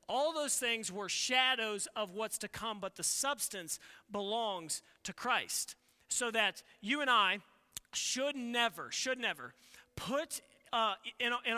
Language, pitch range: English, 205-245 Hz